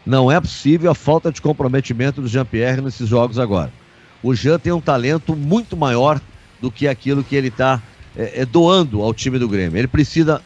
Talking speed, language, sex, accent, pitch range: 185 wpm, Portuguese, male, Brazilian, 120-165 Hz